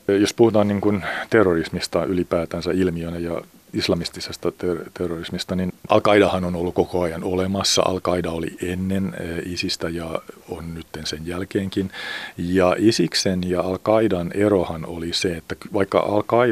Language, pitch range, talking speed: Finnish, 85-100 Hz, 140 wpm